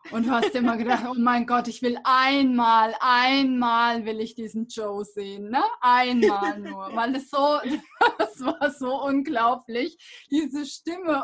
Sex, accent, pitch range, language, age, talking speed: female, German, 245-295 Hz, German, 20-39, 155 wpm